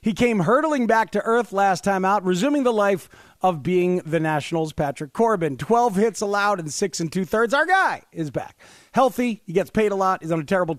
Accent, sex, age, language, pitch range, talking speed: American, male, 40-59, English, 175-235 Hz, 220 wpm